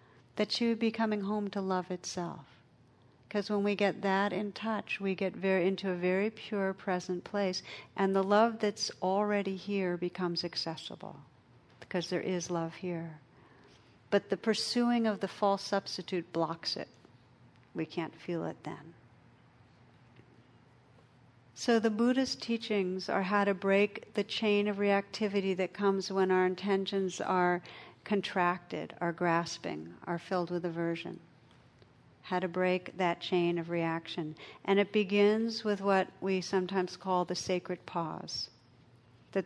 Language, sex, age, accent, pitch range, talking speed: English, female, 60-79, American, 170-200 Hz, 145 wpm